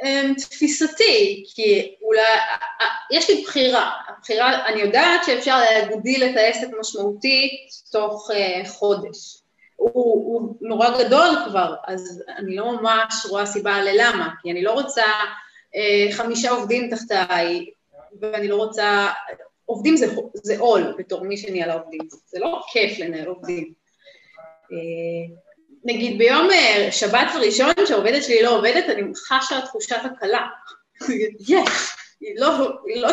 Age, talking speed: 20-39, 125 wpm